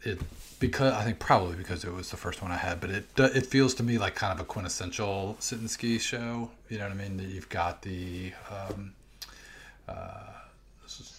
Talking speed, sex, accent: 210 wpm, male, American